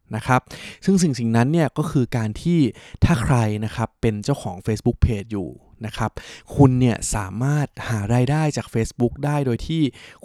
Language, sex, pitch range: Thai, male, 110-130 Hz